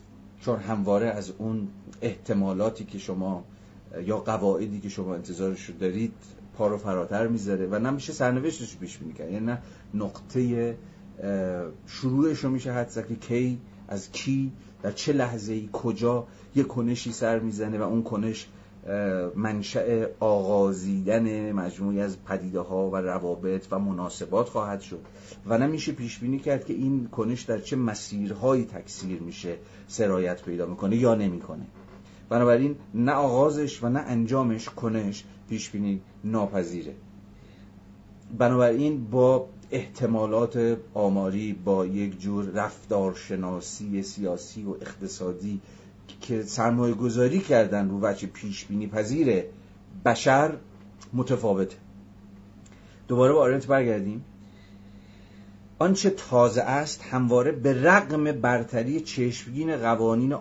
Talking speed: 115 wpm